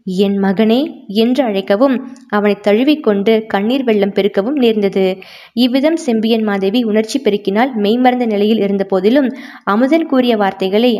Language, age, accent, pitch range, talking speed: Tamil, 20-39, native, 205-250 Hz, 120 wpm